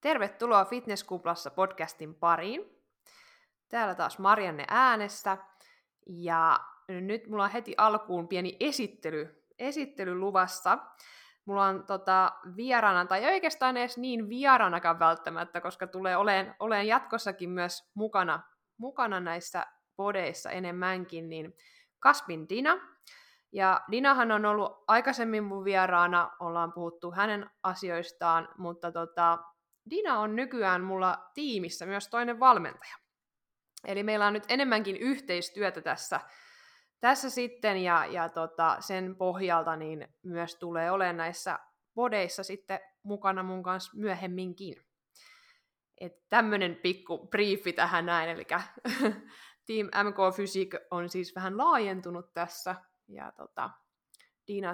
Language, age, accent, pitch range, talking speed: Finnish, 20-39, native, 175-215 Hz, 115 wpm